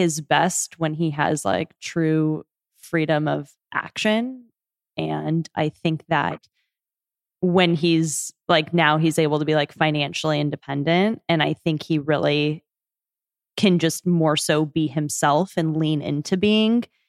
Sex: female